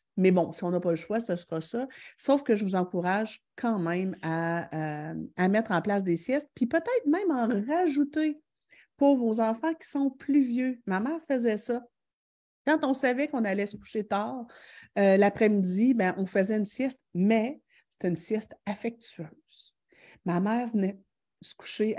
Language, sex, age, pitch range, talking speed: French, female, 50-69, 175-230 Hz, 185 wpm